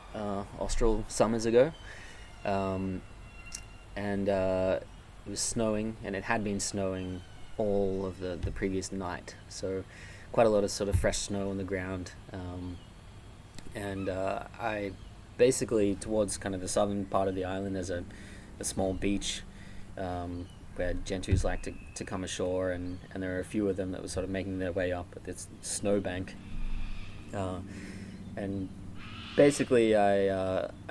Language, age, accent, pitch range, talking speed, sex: English, 20-39, Australian, 90-100 Hz, 165 wpm, male